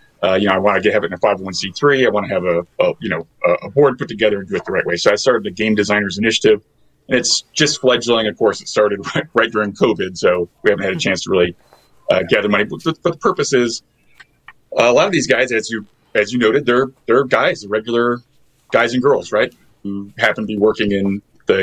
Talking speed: 240 wpm